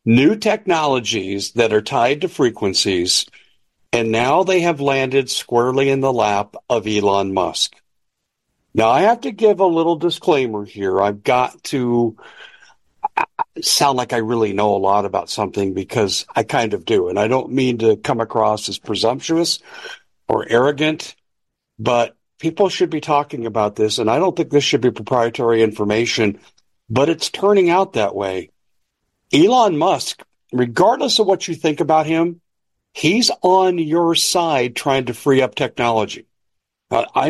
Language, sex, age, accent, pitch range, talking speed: English, male, 60-79, American, 110-155 Hz, 160 wpm